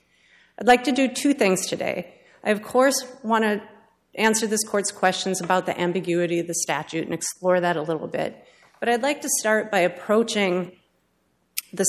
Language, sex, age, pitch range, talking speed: English, female, 40-59, 175-220 Hz, 180 wpm